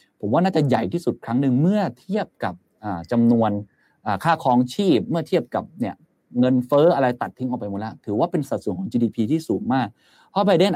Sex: male